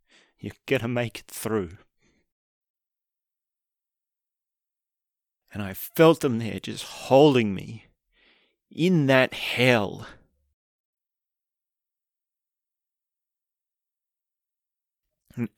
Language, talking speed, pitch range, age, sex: English, 70 wpm, 105-145 Hz, 30-49, male